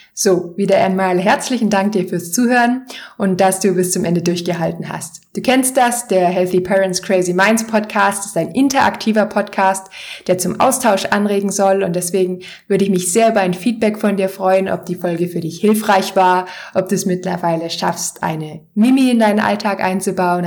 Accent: German